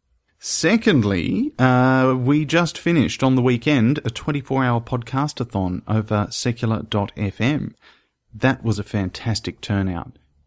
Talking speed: 105 wpm